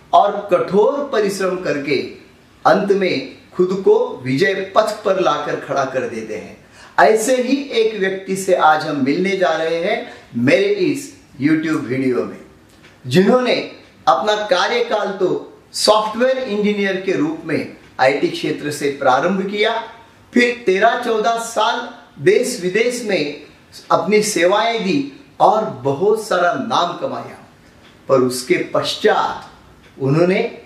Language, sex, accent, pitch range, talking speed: Marathi, male, native, 155-235 Hz, 115 wpm